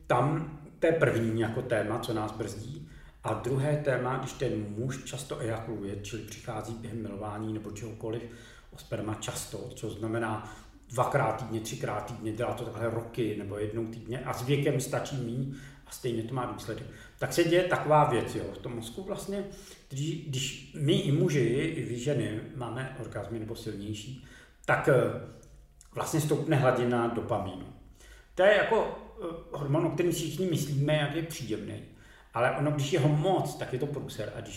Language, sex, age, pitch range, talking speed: Czech, male, 40-59, 110-150 Hz, 165 wpm